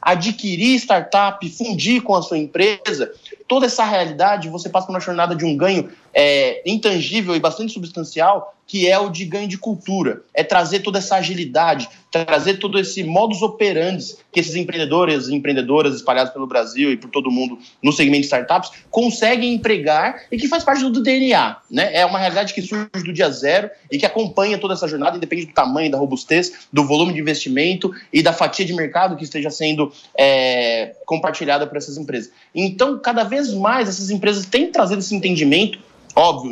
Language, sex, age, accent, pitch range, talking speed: Portuguese, male, 20-39, Brazilian, 160-215 Hz, 185 wpm